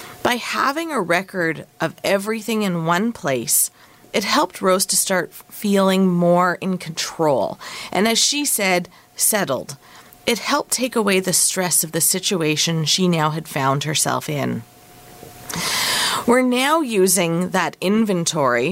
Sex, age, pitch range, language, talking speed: female, 30-49, 165-210 Hz, English, 140 wpm